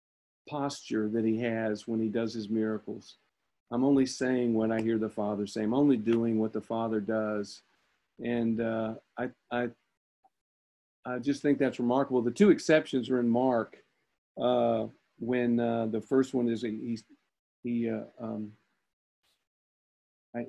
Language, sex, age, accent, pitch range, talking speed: English, male, 50-69, American, 115-130 Hz, 150 wpm